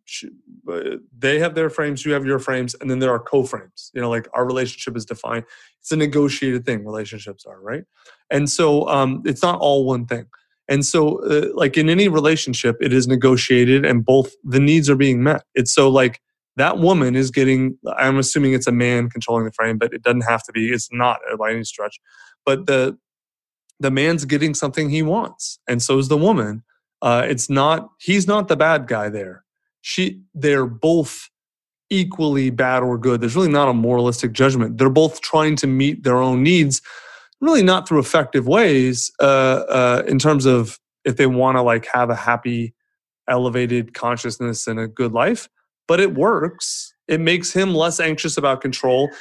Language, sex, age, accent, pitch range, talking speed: English, male, 20-39, American, 125-160 Hz, 190 wpm